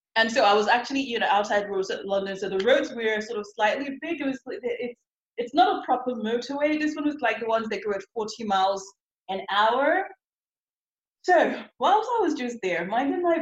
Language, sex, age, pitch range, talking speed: English, female, 20-39, 205-285 Hz, 210 wpm